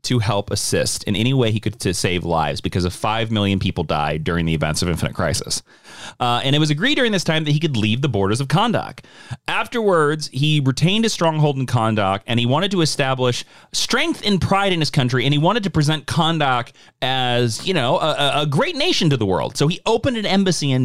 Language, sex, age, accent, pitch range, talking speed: English, male, 30-49, American, 115-170 Hz, 225 wpm